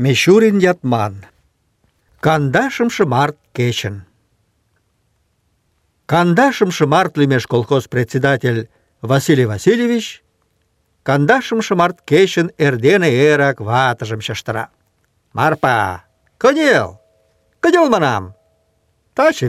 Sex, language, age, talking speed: male, Russian, 50-69, 70 wpm